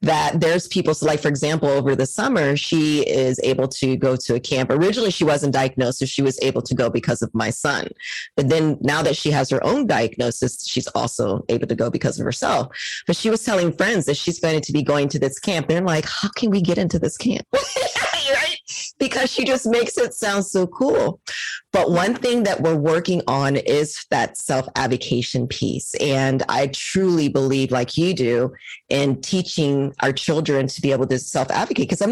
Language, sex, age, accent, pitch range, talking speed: English, female, 30-49, American, 135-185 Hz, 205 wpm